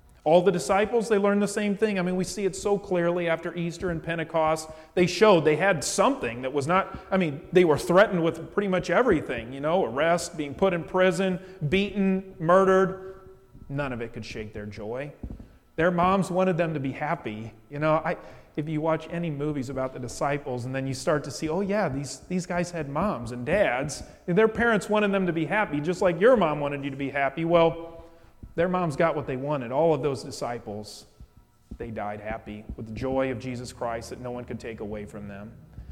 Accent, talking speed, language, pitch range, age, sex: American, 215 wpm, English, 125-180 Hz, 40-59, male